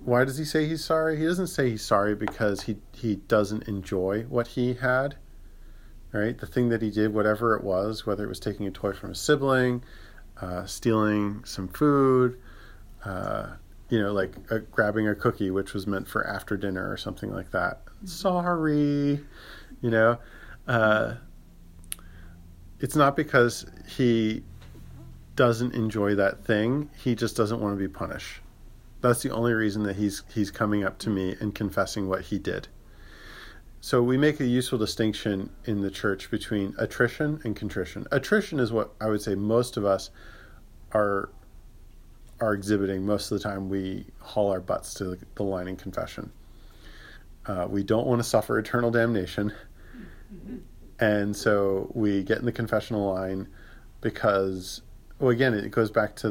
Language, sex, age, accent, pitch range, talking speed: English, male, 40-59, American, 100-120 Hz, 165 wpm